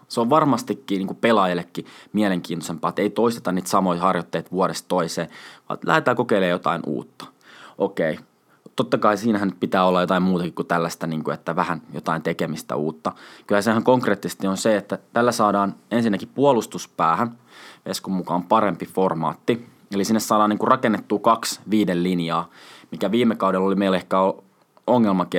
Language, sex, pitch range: Finnish, male, 90-110 Hz